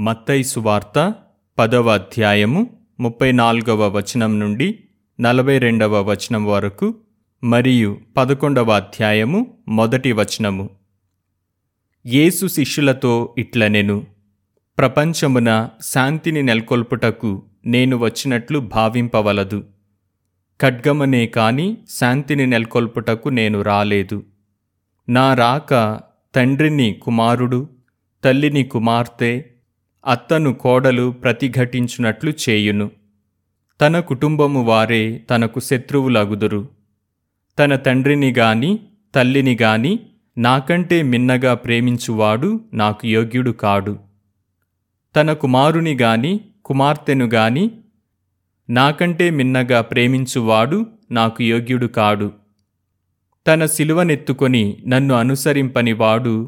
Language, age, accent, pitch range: Telugu, 30-49, native, 105-135 Hz